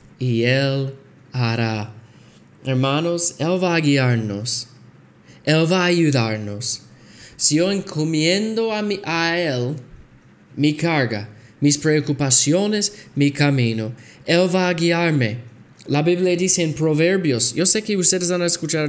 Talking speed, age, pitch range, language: 125 wpm, 20-39, 120-165 Hz, Spanish